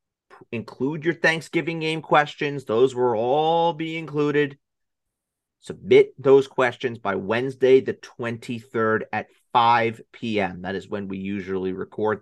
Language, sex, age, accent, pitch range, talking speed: English, male, 30-49, American, 110-165 Hz, 130 wpm